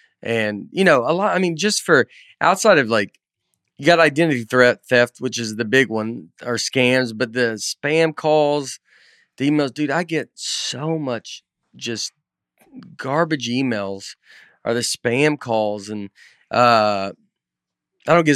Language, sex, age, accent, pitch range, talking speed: English, male, 30-49, American, 115-145 Hz, 155 wpm